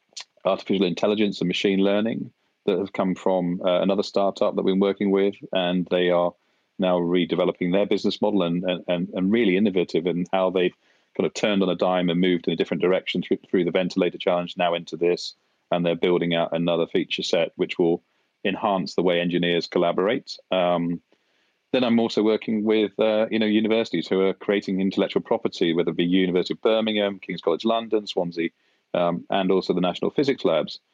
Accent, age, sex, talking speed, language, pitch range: British, 30-49, male, 190 wpm, English, 85-100 Hz